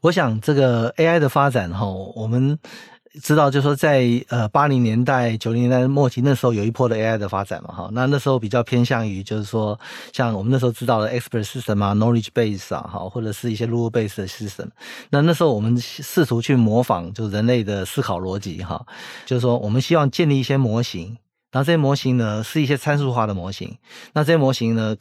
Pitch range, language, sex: 110-135 Hz, Chinese, male